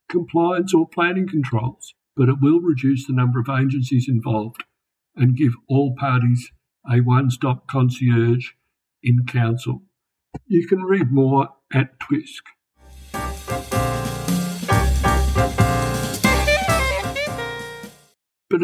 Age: 60-79